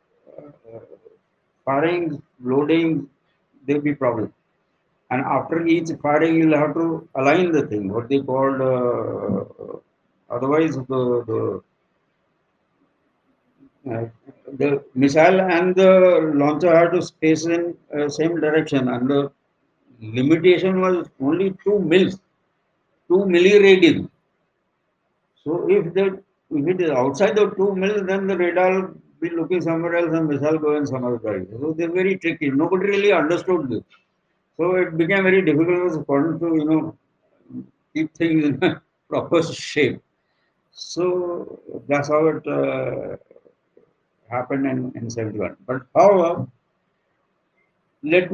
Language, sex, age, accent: English, male, 60-79, Indian